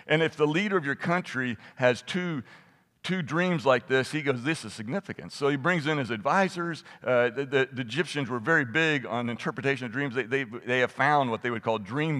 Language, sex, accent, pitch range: English, male, American, 120-155 Hz